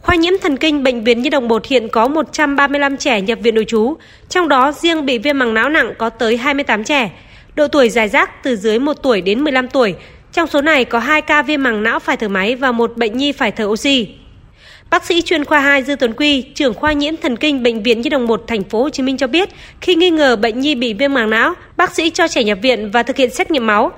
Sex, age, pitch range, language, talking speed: female, 20-39, 240-305 Hz, Vietnamese, 265 wpm